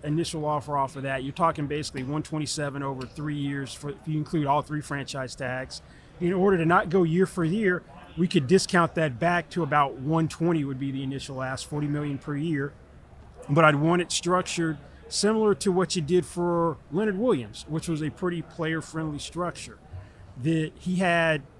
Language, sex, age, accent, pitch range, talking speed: English, male, 30-49, American, 145-170 Hz, 190 wpm